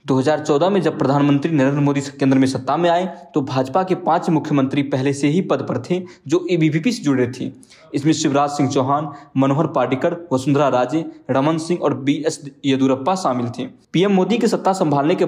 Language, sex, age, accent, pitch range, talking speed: English, male, 20-39, Indian, 135-170 Hz, 195 wpm